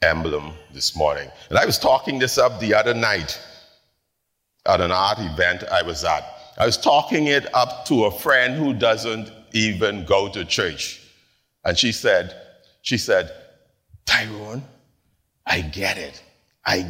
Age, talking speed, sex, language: 50-69, 155 wpm, male, English